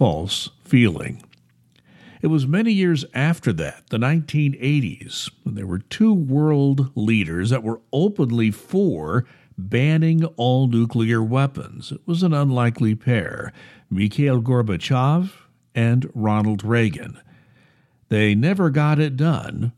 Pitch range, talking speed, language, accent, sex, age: 115-150 Hz, 120 wpm, English, American, male, 60-79